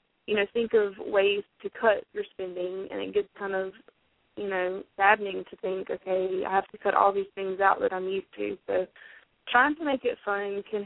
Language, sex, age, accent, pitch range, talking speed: English, female, 20-39, American, 195-240 Hz, 215 wpm